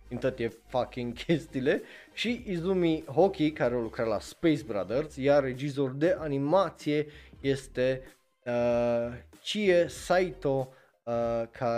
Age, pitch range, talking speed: 20-39, 115-150 Hz, 110 wpm